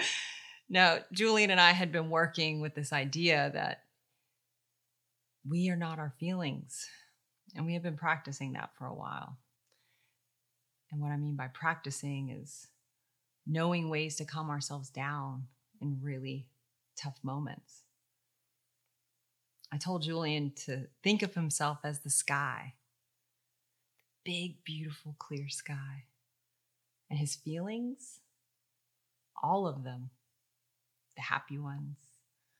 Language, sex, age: English, female, 30-49